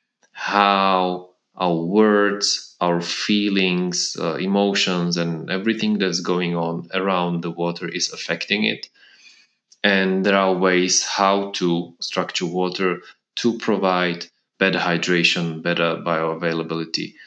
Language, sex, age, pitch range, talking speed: English, male, 20-39, 85-100 Hz, 110 wpm